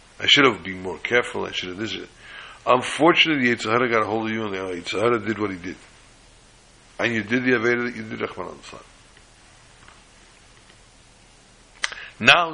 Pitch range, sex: 100-125 Hz, male